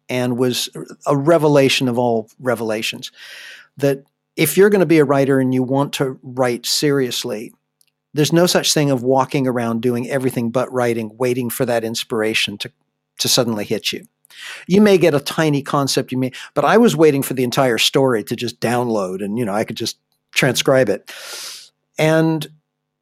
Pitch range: 125-160 Hz